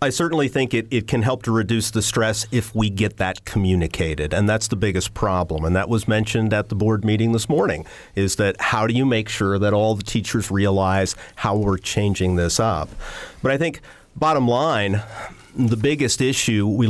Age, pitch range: 40-59, 95-120 Hz